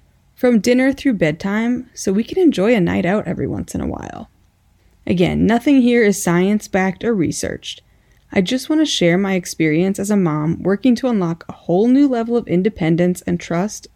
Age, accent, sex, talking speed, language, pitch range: 30-49, American, female, 185 wpm, English, 165-230 Hz